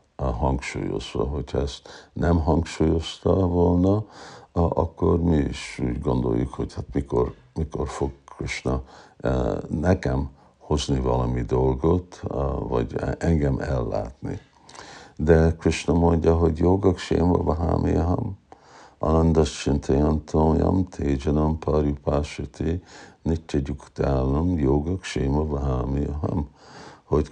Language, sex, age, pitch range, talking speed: Hungarian, male, 50-69, 70-85 Hz, 90 wpm